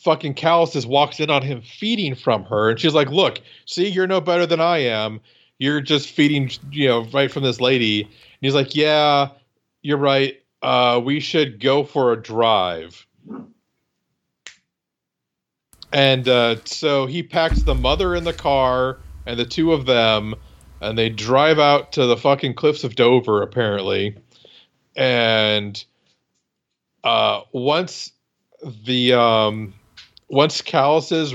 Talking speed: 145 wpm